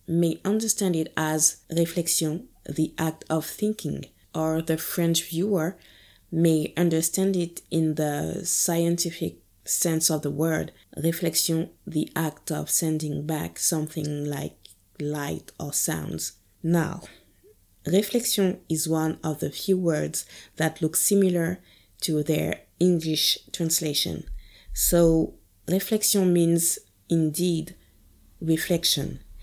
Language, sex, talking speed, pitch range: English, female, 110 wpm, 155-175 Hz